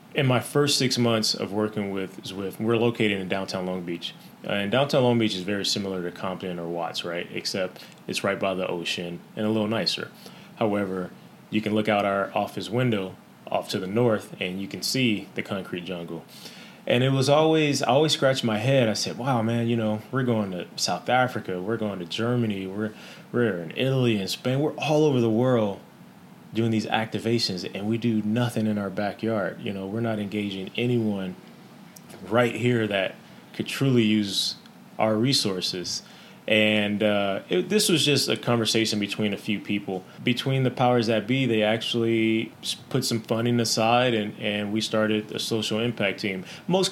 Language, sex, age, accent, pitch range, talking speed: English, male, 20-39, American, 100-120 Hz, 190 wpm